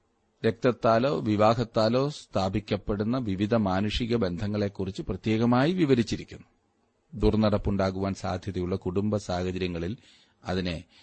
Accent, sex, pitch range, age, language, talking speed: native, male, 100-120 Hz, 30-49, Malayalam, 70 wpm